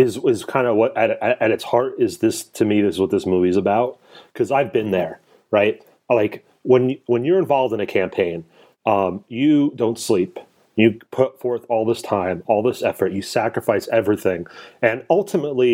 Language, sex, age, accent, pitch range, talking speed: English, male, 30-49, American, 95-125 Hz, 195 wpm